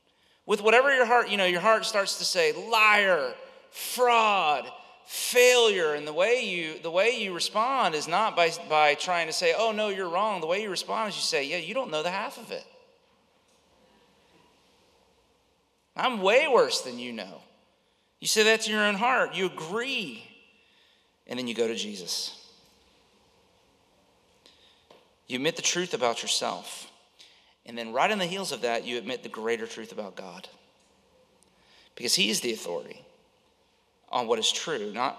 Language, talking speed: English, 170 wpm